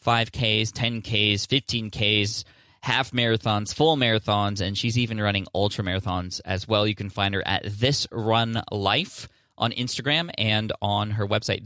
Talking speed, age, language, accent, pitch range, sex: 140 wpm, 20-39, English, American, 105-125 Hz, male